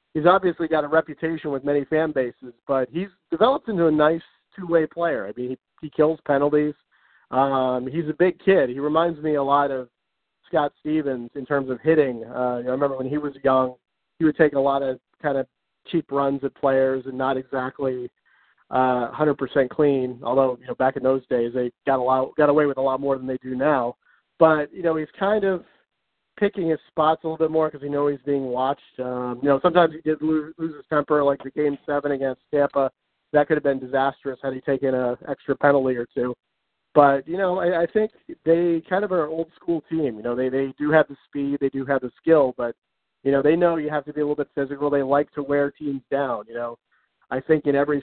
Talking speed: 235 wpm